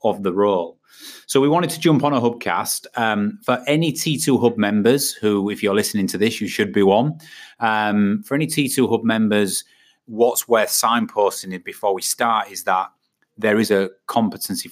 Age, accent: 30-49, British